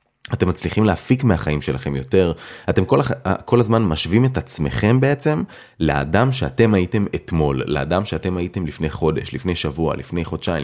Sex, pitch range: male, 80-120 Hz